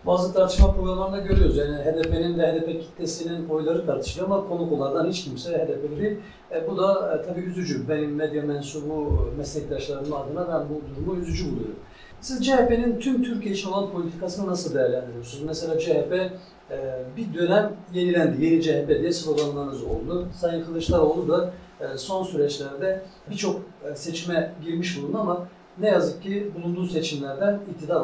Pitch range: 150-185 Hz